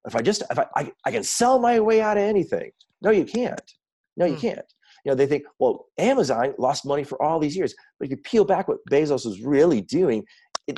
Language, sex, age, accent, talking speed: English, male, 40-59, American, 240 wpm